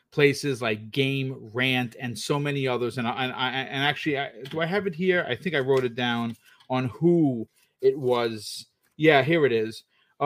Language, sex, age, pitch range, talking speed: English, male, 30-49, 125-155 Hz, 205 wpm